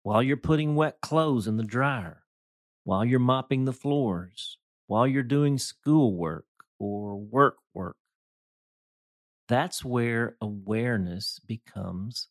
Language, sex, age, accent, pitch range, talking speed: English, male, 50-69, American, 95-135 Hz, 115 wpm